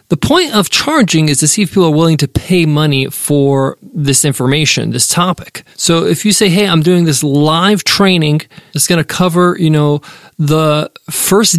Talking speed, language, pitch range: 190 wpm, English, 145-190 Hz